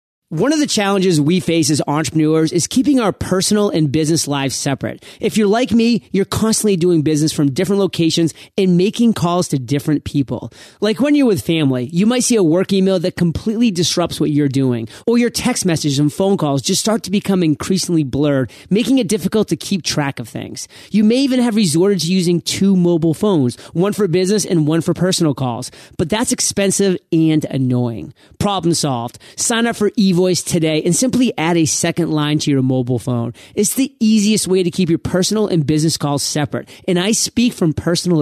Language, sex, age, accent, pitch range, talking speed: English, male, 30-49, American, 155-200 Hz, 200 wpm